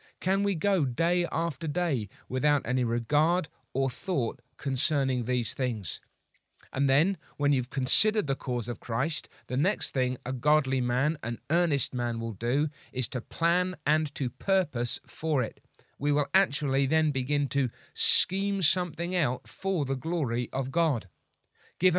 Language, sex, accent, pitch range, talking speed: English, male, British, 130-170 Hz, 155 wpm